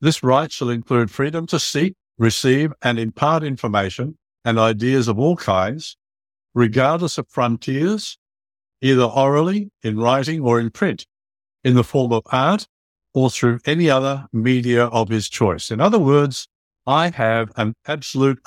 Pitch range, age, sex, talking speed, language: 110-140 Hz, 60-79, male, 150 wpm, English